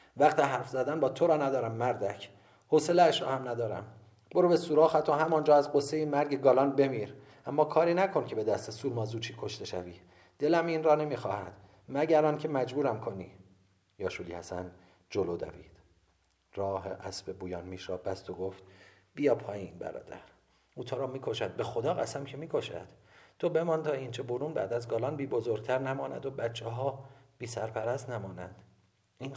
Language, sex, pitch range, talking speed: Persian, male, 100-135 Hz, 160 wpm